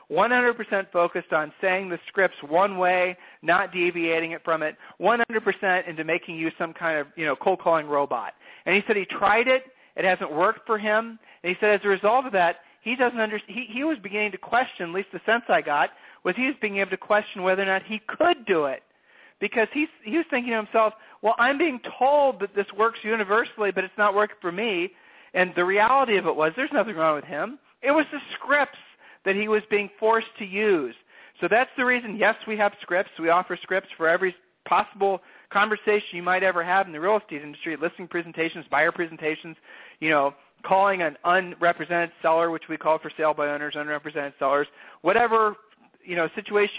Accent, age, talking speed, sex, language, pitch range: American, 40-59, 210 wpm, male, English, 170-225 Hz